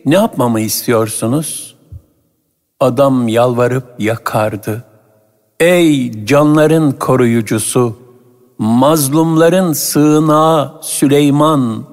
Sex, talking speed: male, 60 wpm